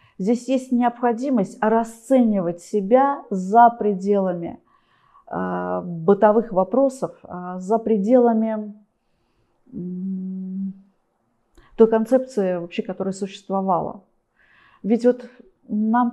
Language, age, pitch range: Russian, 40-59, 195-245 Hz